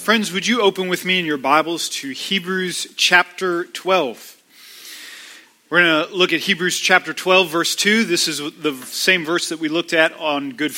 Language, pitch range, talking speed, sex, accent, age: English, 145-210 Hz, 190 wpm, male, American, 40-59